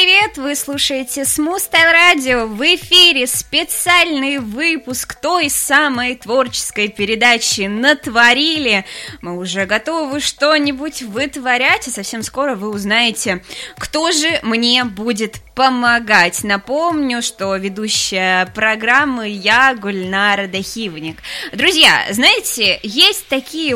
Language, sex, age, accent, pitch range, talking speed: Russian, female, 20-39, native, 210-280 Hz, 105 wpm